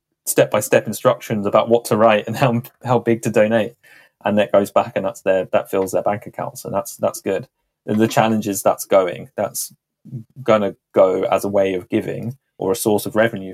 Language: English